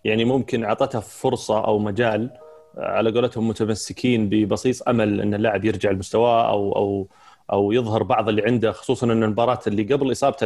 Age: 30-49